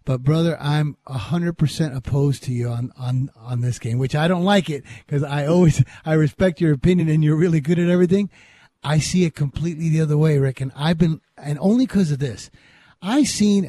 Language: English